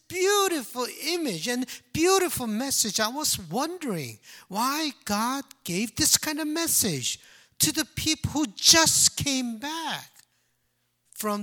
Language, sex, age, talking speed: English, male, 50-69, 120 wpm